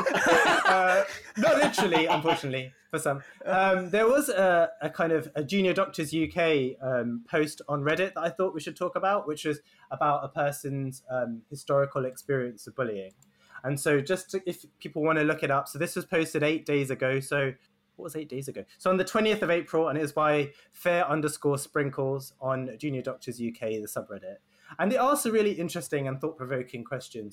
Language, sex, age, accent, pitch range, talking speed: English, male, 20-39, British, 130-160 Hz, 200 wpm